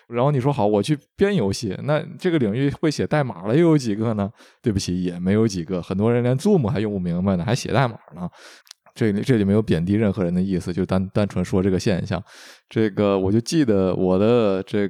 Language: Chinese